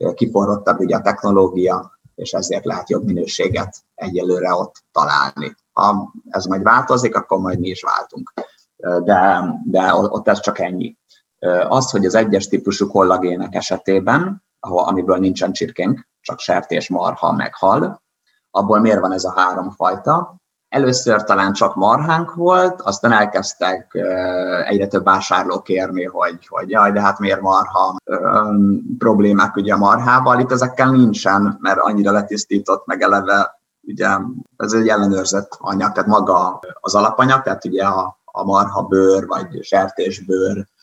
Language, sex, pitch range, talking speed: Hungarian, male, 95-105 Hz, 145 wpm